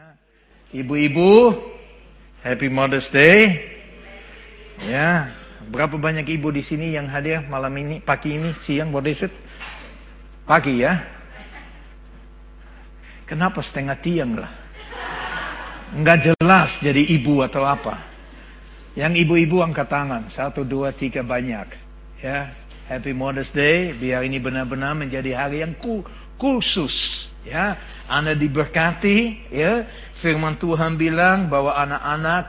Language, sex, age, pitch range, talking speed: Malay, male, 60-79, 135-180 Hz, 110 wpm